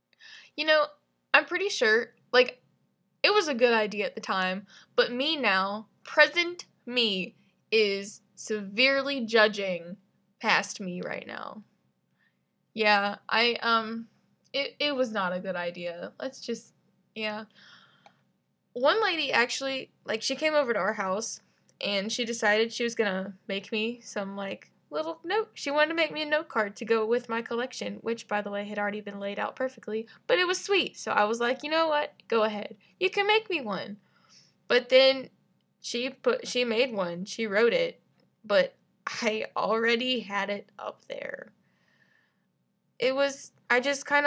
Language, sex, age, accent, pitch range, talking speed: English, female, 10-29, American, 205-275 Hz, 170 wpm